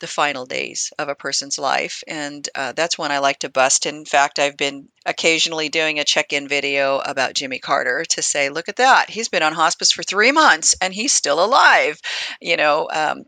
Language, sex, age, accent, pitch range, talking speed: English, female, 40-59, American, 150-195 Hz, 210 wpm